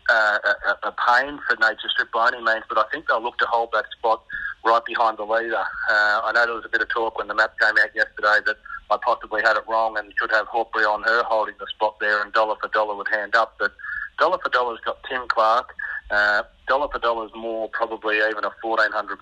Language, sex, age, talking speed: English, male, 40-59, 245 wpm